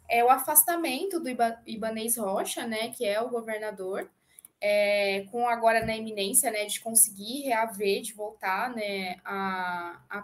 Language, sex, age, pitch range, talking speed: Portuguese, female, 20-39, 215-275 Hz, 160 wpm